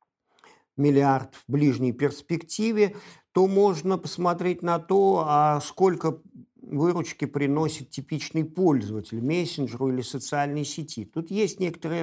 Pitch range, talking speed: 130-170 Hz, 115 wpm